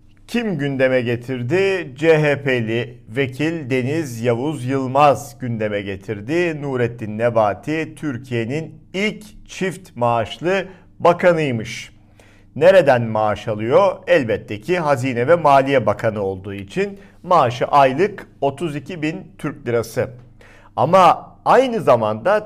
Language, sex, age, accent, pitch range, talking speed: Turkish, male, 50-69, native, 110-150 Hz, 100 wpm